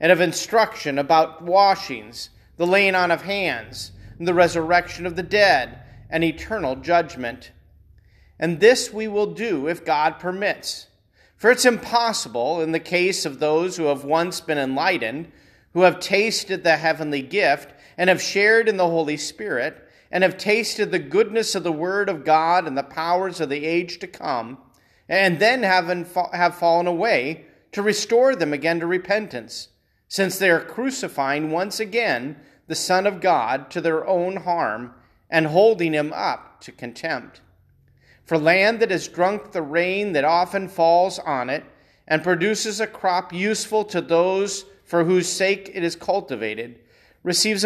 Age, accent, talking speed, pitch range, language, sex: 40-59, American, 160 wpm, 155-195 Hz, English, male